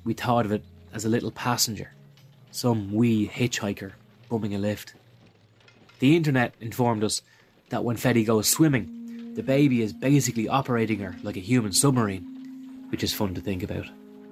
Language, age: English, 20-39